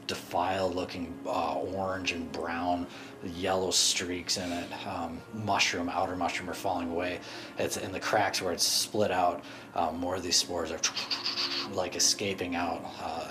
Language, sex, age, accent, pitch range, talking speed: English, male, 30-49, American, 85-100 Hz, 160 wpm